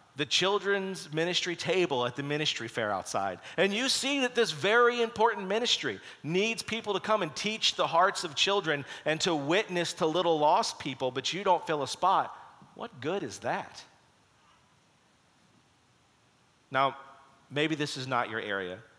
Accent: American